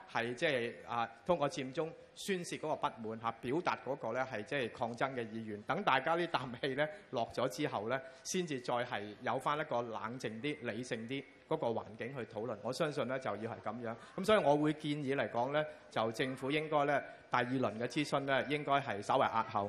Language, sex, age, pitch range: Chinese, male, 30-49, 120-155 Hz